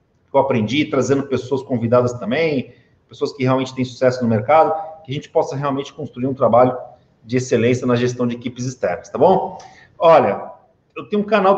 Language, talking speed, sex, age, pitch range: Portuguese, 180 wpm, male, 40-59, 135-200 Hz